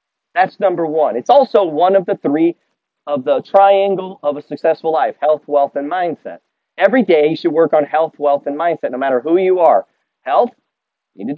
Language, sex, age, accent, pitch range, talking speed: English, male, 40-59, American, 145-200 Hz, 205 wpm